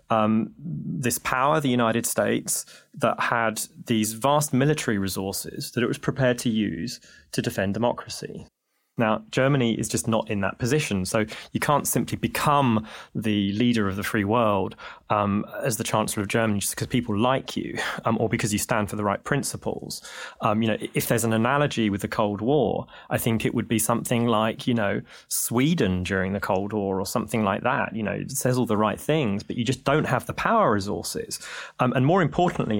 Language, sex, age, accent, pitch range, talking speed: English, male, 20-39, British, 110-135 Hz, 200 wpm